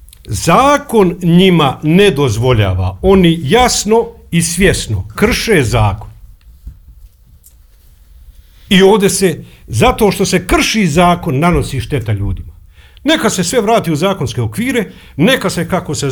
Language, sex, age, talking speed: Croatian, male, 50-69, 120 wpm